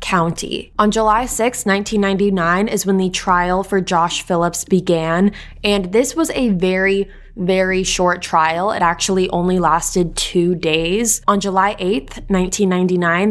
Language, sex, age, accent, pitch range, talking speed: English, female, 20-39, American, 175-210 Hz, 140 wpm